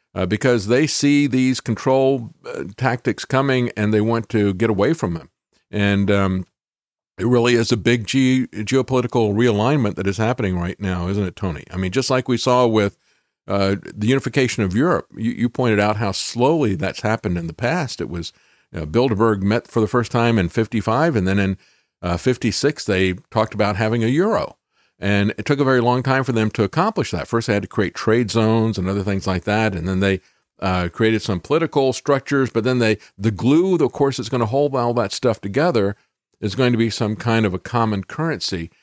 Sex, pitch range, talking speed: male, 100-125 Hz, 210 wpm